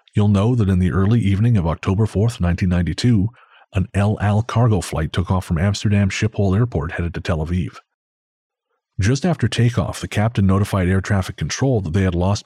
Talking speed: 190 wpm